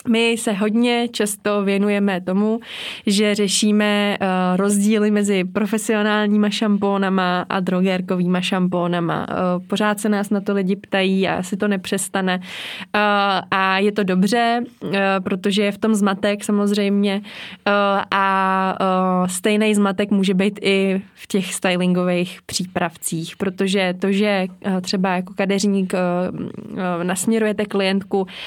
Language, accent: Czech, native